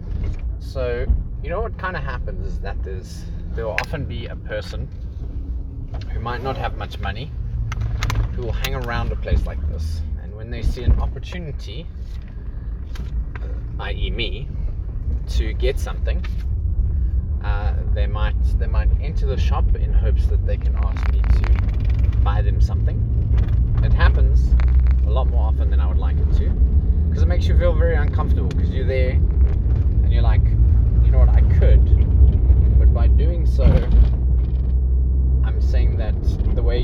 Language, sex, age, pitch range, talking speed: English, male, 20-39, 70-90 Hz, 155 wpm